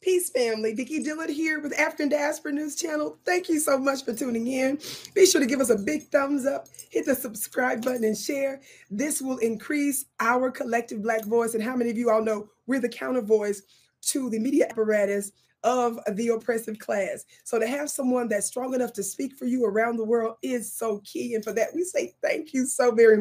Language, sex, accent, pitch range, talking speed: English, female, American, 215-270 Hz, 215 wpm